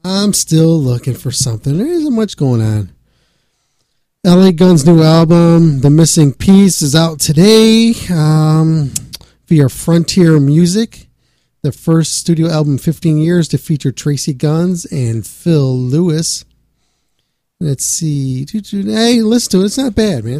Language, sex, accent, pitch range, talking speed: English, male, American, 125-160 Hz, 140 wpm